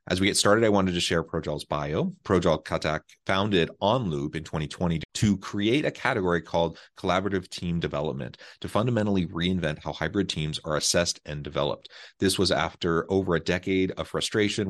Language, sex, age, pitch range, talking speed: English, male, 30-49, 80-95 Hz, 170 wpm